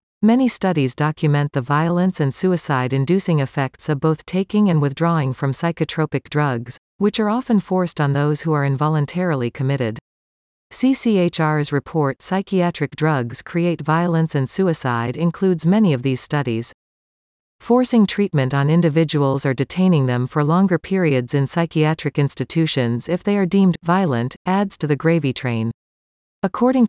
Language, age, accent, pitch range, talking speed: English, 40-59, American, 135-180 Hz, 145 wpm